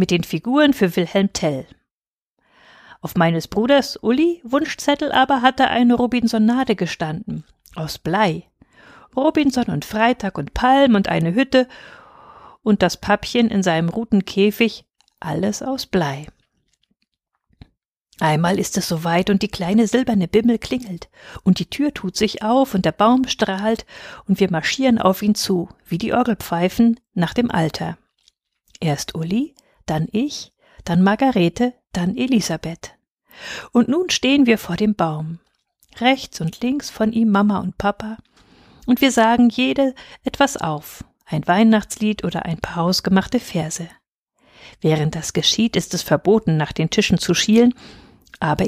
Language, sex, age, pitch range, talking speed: German, female, 50-69, 170-245 Hz, 140 wpm